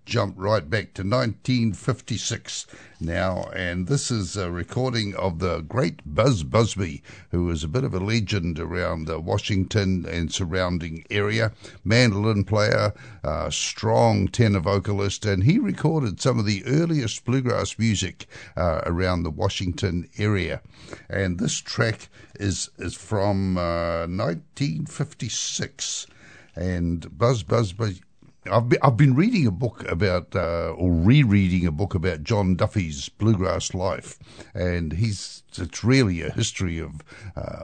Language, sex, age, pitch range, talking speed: English, male, 60-79, 85-115 Hz, 135 wpm